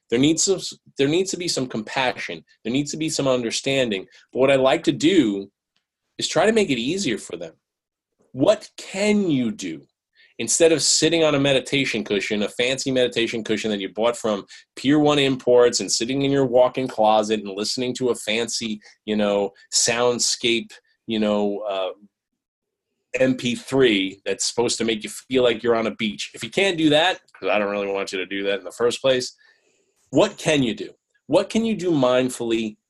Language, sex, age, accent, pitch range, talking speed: English, male, 20-39, American, 110-150 Hz, 190 wpm